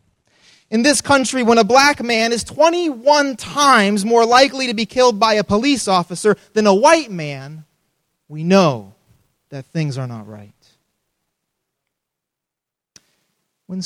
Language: English